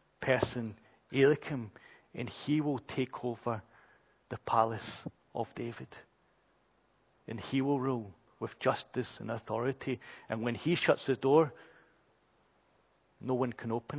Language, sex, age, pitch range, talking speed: English, male, 40-59, 145-185 Hz, 125 wpm